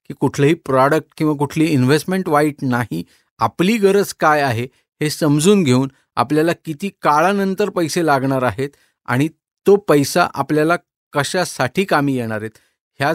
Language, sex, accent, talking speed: Marathi, male, native, 135 wpm